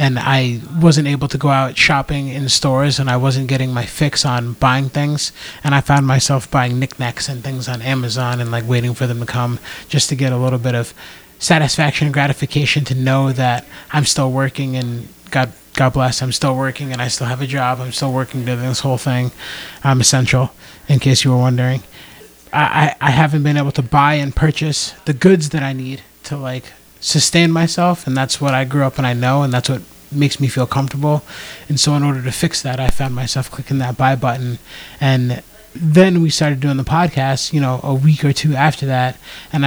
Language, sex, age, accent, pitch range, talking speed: English, male, 30-49, American, 125-145 Hz, 220 wpm